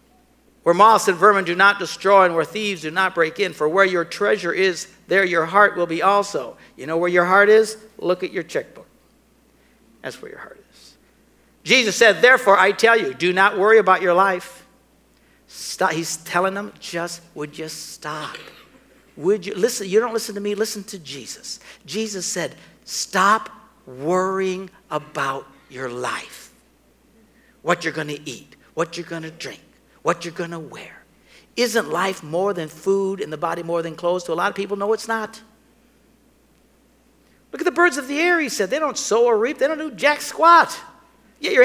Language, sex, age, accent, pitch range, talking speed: English, male, 60-79, American, 180-265 Hz, 190 wpm